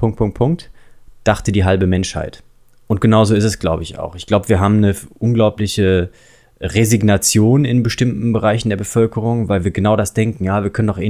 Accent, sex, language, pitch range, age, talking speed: German, male, German, 95-115 Hz, 20-39, 195 wpm